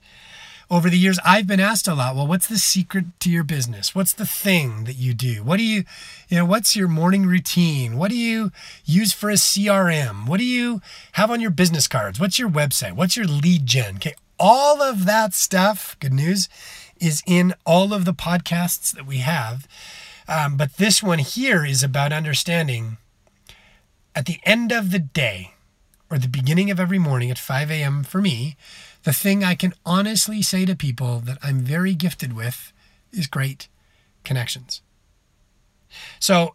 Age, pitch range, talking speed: 30-49, 140-190 Hz, 180 wpm